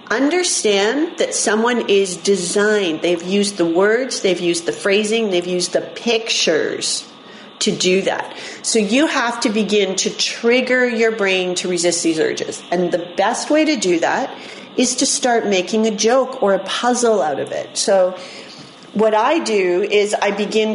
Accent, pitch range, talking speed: American, 190-255 Hz, 170 wpm